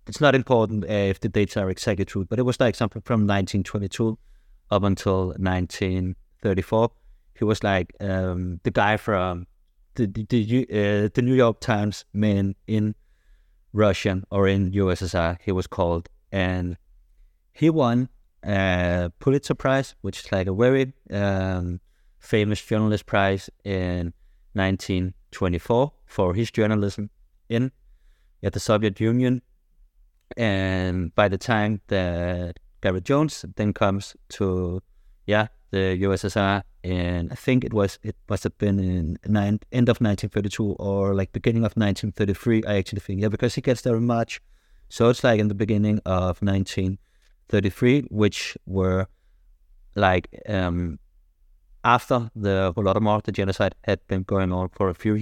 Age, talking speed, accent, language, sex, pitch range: 30-49, 145 wpm, Danish, English, male, 90-110 Hz